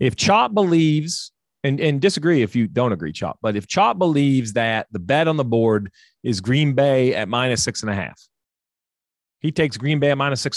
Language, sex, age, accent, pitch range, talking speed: English, male, 40-59, American, 130-185 Hz, 210 wpm